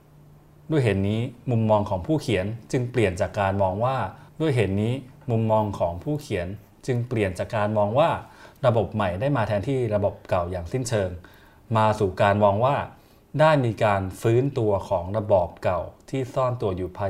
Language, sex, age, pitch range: Thai, male, 20-39, 100-125 Hz